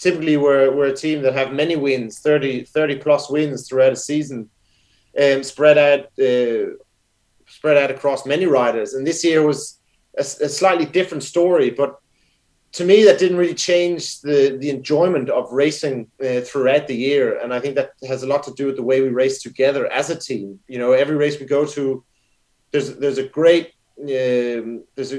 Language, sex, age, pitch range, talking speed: English, male, 30-49, 130-150 Hz, 200 wpm